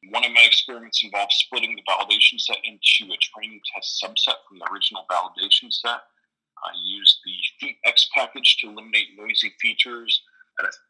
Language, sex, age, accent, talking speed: English, male, 30-49, American, 160 wpm